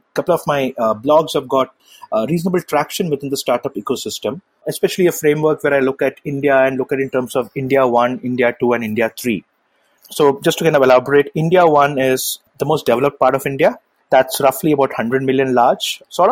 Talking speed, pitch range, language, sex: 215 wpm, 125-160 Hz, English, male